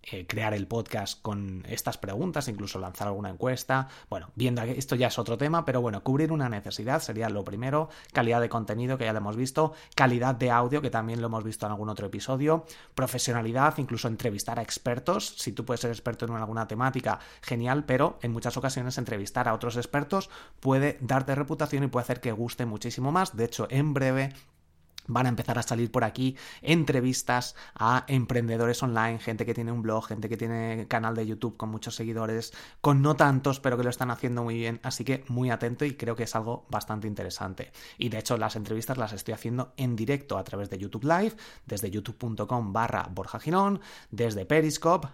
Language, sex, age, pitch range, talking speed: Spanish, male, 30-49, 110-130 Hz, 200 wpm